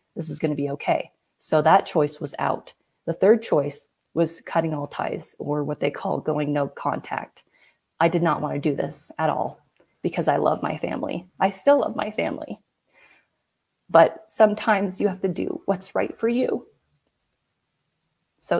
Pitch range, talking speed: 165-230 Hz, 170 wpm